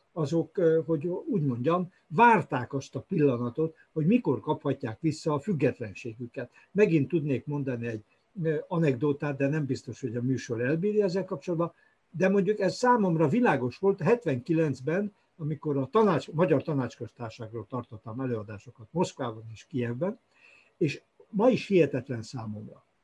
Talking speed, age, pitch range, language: 130 wpm, 60-79, 125-170 Hz, Hungarian